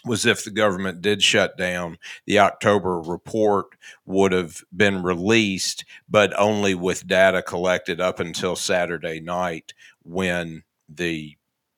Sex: male